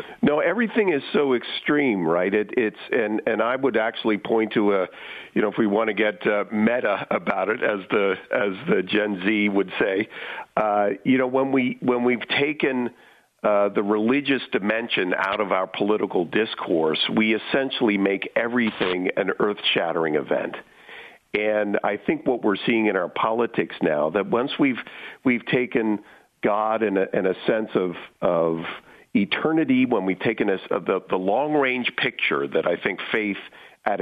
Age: 50-69